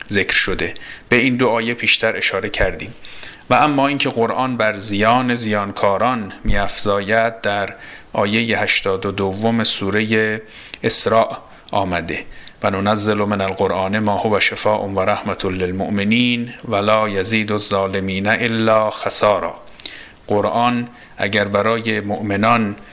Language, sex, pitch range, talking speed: Persian, male, 105-120 Hz, 105 wpm